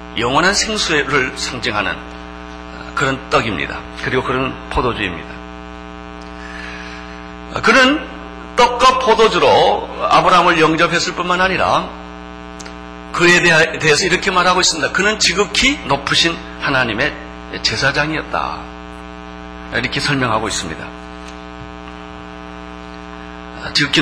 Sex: male